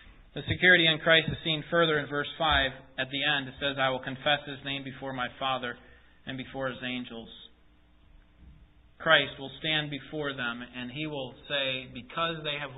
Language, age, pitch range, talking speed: English, 30-49, 125-160 Hz, 185 wpm